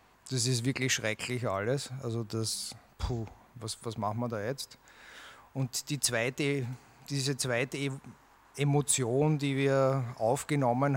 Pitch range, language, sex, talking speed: 125-140 Hz, English, male, 115 wpm